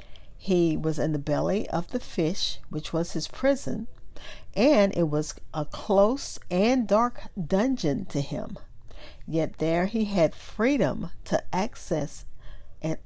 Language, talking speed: English, 140 wpm